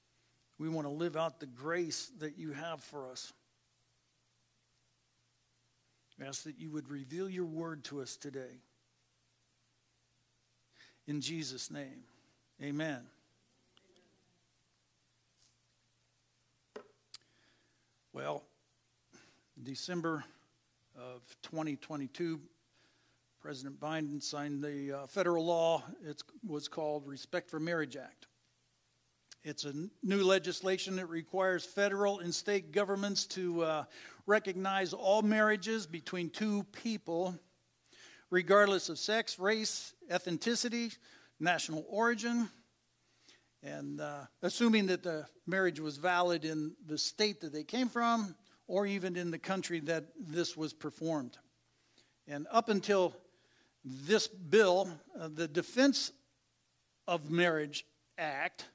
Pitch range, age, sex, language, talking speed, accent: 140-185 Hz, 60-79, male, English, 105 wpm, American